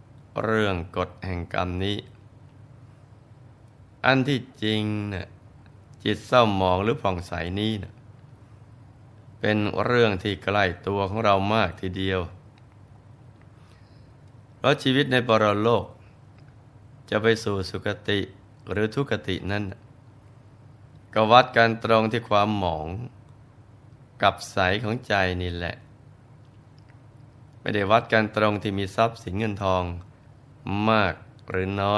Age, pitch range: 20-39, 100-125 Hz